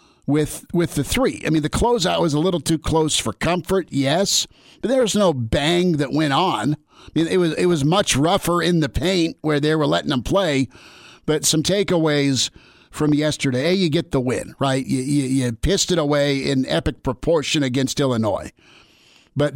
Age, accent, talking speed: 50-69, American, 195 wpm